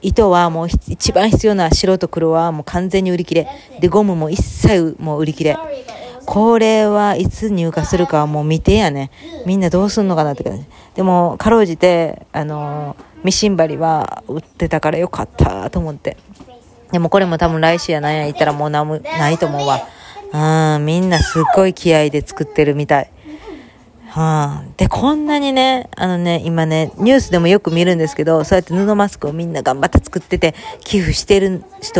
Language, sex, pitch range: Japanese, female, 155-210 Hz